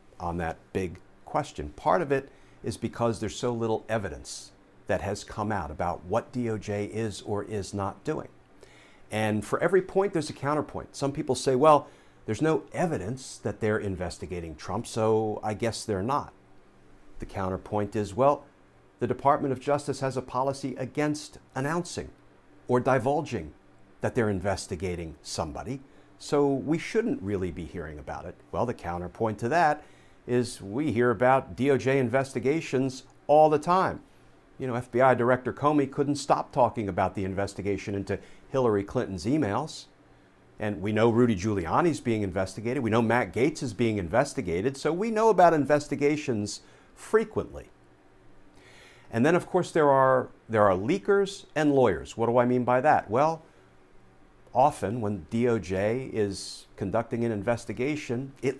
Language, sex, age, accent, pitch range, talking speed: English, male, 50-69, American, 105-140 Hz, 155 wpm